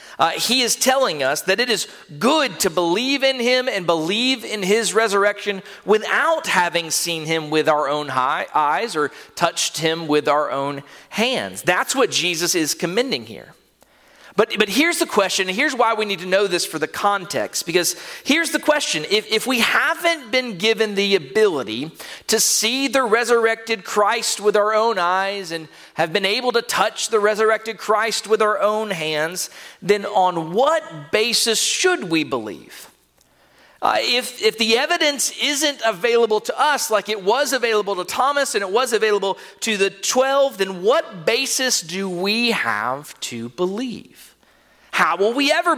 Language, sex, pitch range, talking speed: English, male, 175-250 Hz, 170 wpm